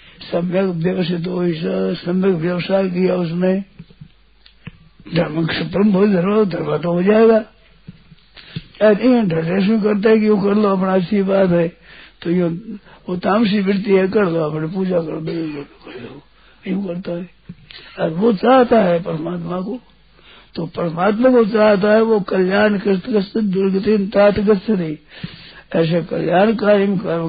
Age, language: 60-79, Hindi